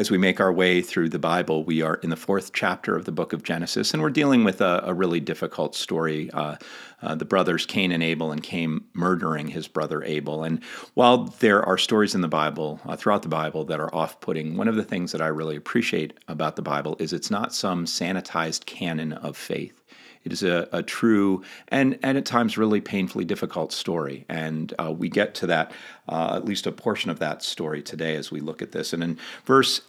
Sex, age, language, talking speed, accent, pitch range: male, 40-59, English, 225 wpm, American, 80-115 Hz